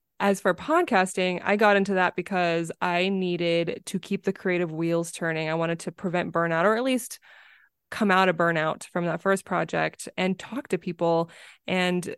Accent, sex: American, female